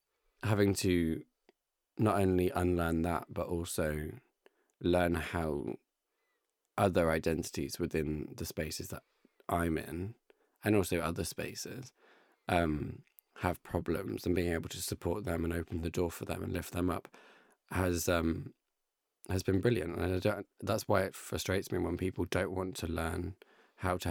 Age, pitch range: 20-39, 80-90 Hz